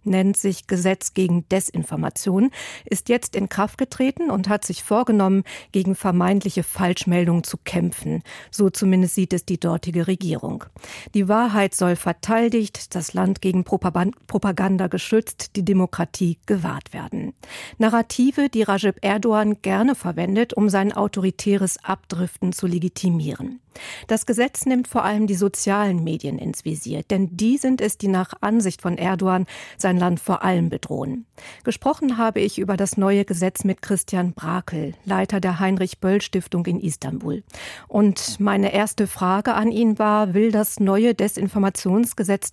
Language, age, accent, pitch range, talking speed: German, 50-69, German, 180-210 Hz, 145 wpm